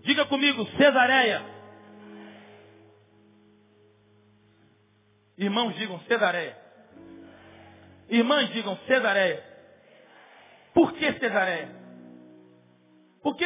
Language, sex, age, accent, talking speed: Spanish, male, 40-59, Brazilian, 60 wpm